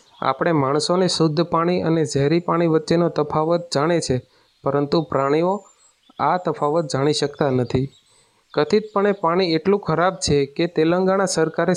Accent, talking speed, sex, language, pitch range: native, 135 wpm, male, Gujarati, 145-180 Hz